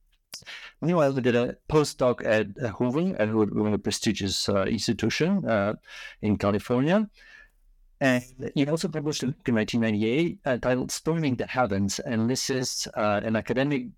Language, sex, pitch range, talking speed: English, male, 110-140 Hz, 135 wpm